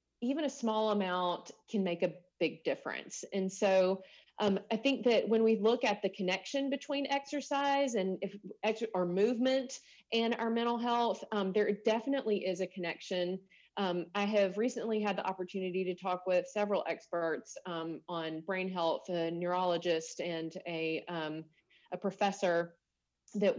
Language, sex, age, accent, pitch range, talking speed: English, female, 30-49, American, 175-205 Hz, 160 wpm